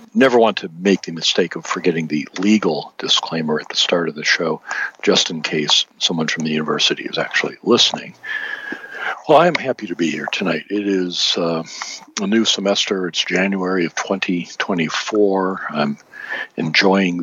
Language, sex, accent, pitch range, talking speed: English, male, American, 85-105 Hz, 165 wpm